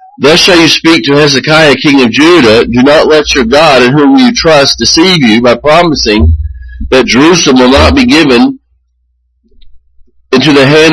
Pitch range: 110-165 Hz